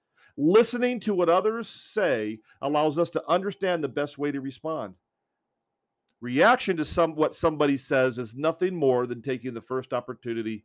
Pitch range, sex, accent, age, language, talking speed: 145-190 Hz, male, American, 40-59, English, 160 wpm